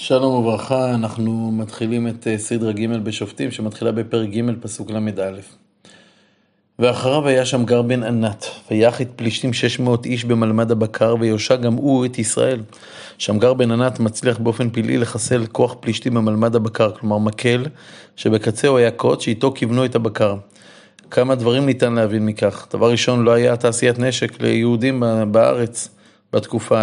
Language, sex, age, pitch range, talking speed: Hebrew, male, 30-49, 110-125 Hz, 145 wpm